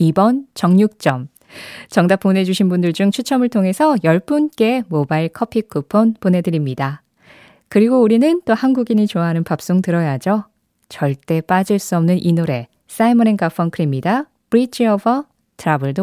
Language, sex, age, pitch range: Korean, female, 20-39, 155-215 Hz